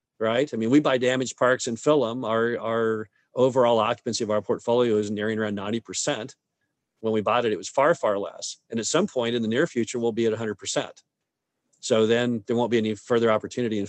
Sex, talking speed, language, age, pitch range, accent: male, 220 wpm, English, 50-69, 105-125 Hz, American